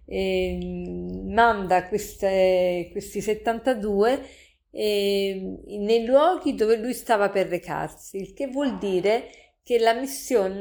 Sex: female